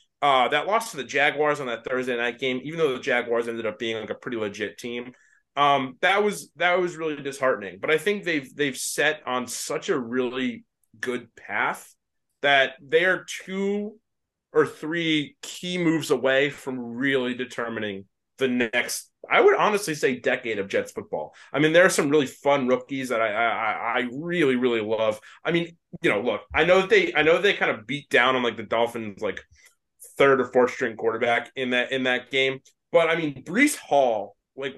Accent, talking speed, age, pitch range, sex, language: American, 200 wpm, 30-49, 125-175 Hz, male, English